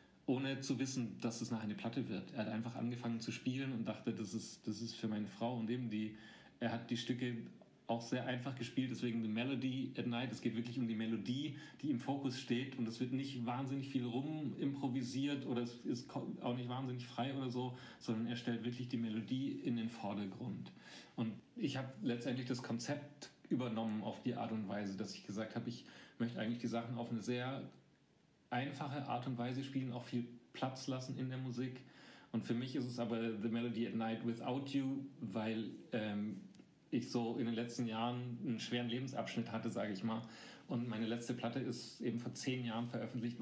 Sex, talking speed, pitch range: male, 205 wpm, 115-130 Hz